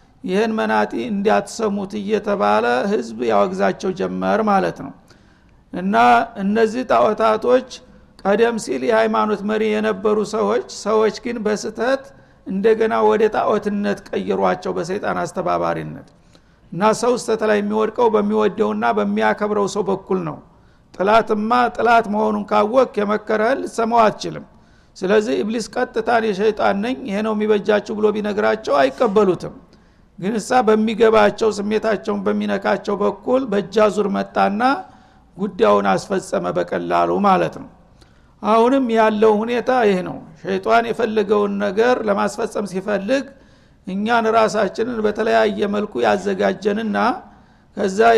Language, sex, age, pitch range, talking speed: Amharic, male, 60-79, 205-225 Hz, 100 wpm